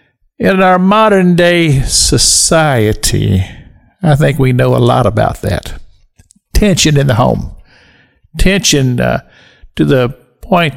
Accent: American